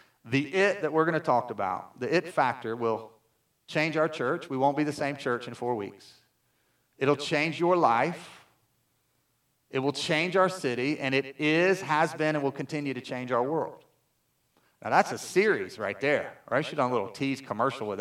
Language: English